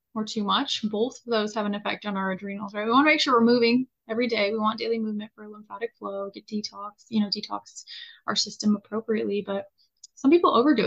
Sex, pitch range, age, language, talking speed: female, 210-265 Hz, 20-39, English, 225 wpm